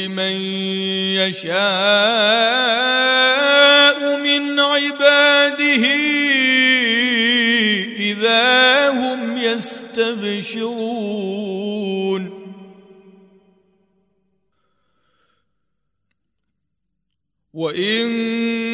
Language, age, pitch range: Arabic, 40-59, 210-240 Hz